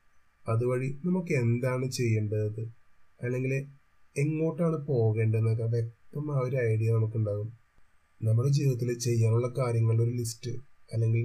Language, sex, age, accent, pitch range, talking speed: Malayalam, male, 30-49, native, 115-130 Hz, 95 wpm